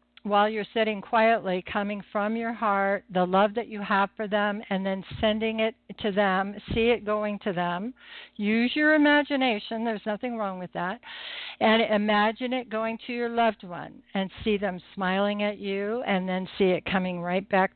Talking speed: 185 wpm